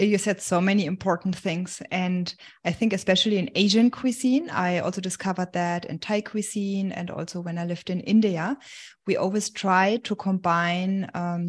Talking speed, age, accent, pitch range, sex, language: 170 wpm, 20-39, German, 170-200 Hz, female, English